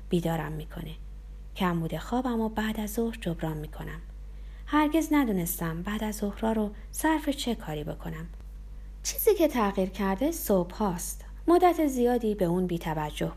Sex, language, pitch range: female, Persian, 165-245 Hz